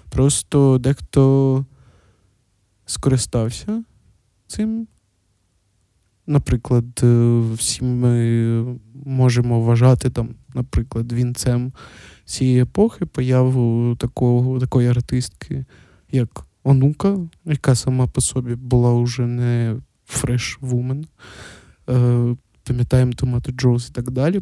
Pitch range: 115-135 Hz